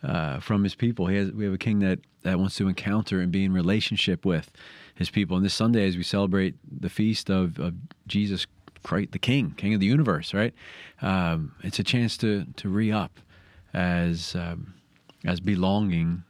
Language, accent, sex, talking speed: English, American, male, 175 wpm